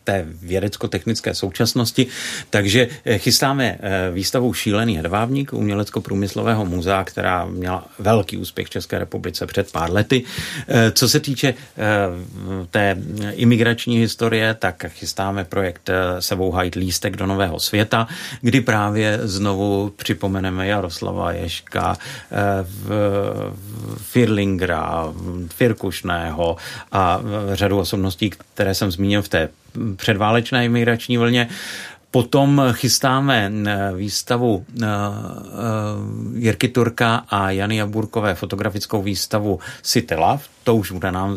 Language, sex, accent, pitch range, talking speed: Czech, male, native, 95-115 Hz, 100 wpm